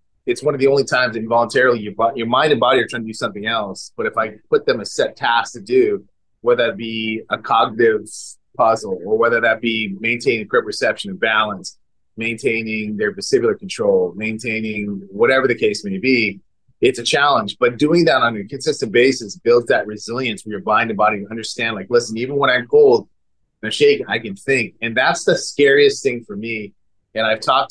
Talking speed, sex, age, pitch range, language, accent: 210 wpm, male, 30-49, 110-150 Hz, English, American